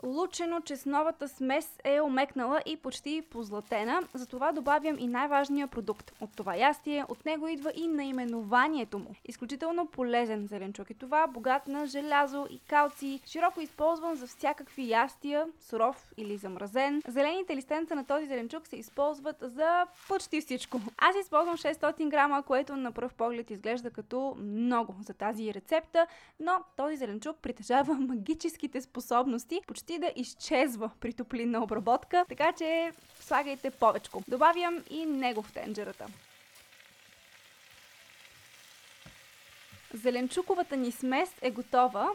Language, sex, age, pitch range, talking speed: Bulgarian, female, 20-39, 230-310 Hz, 130 wpm